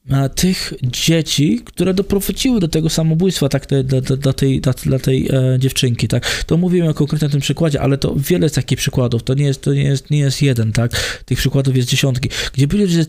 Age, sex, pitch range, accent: 20-39, male, 125-155 Hz, native